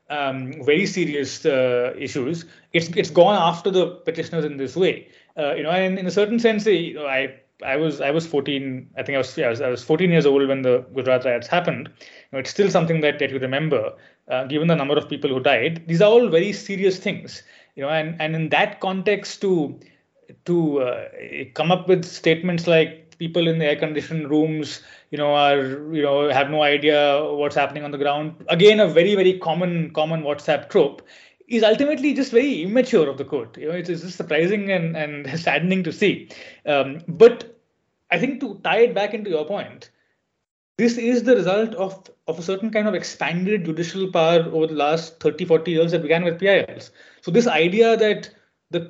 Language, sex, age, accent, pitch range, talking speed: English, male, 20-39, Indian, 150-195 Hz, 205 wpm